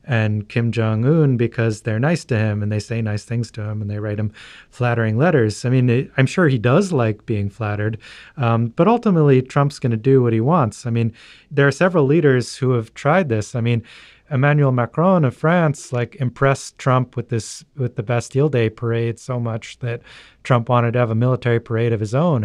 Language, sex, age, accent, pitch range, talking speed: English, male, 30-49, American, 115-130 Hz, 205 wpm